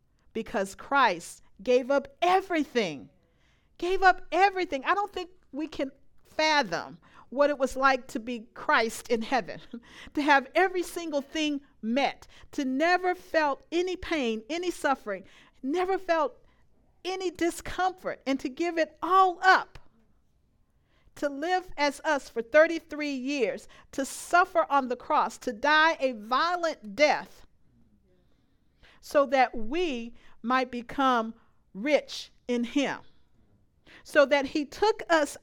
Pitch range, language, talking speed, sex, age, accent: 270-345 Hz, English, 130 wpm, female, 50-69, American